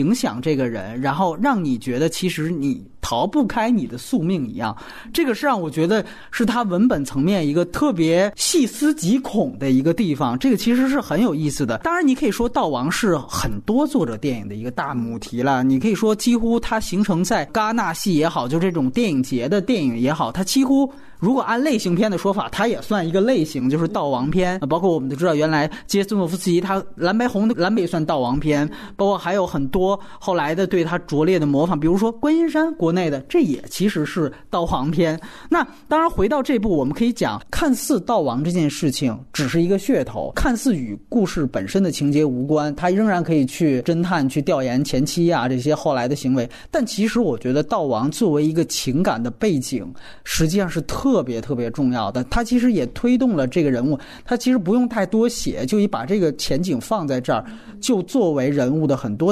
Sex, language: male, Chinese